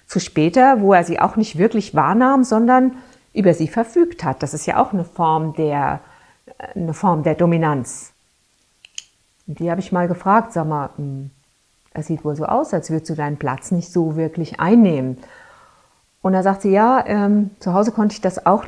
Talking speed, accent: 190 wpm, German